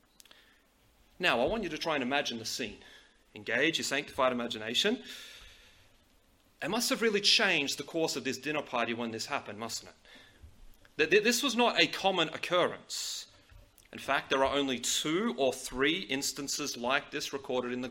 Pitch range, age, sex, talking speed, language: 130-180 Hz, 30-49, male, 170 wpm, English